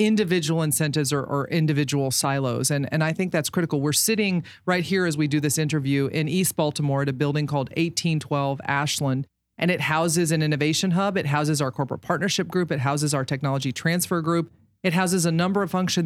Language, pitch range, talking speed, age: English, 140-170 Hz, 200 wpm, 40-59